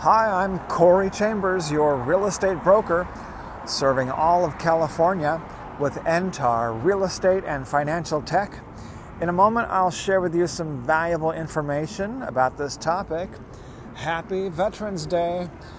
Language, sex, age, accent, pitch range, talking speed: English, male, 40-59, American, 125-175 Hz, 135 wpm